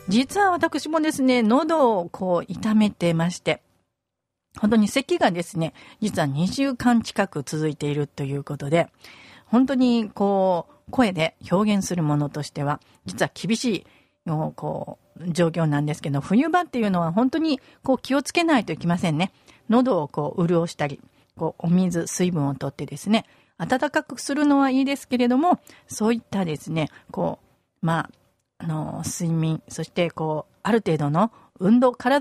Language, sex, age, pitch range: Japanese, female, 50-69, 160-245 Hz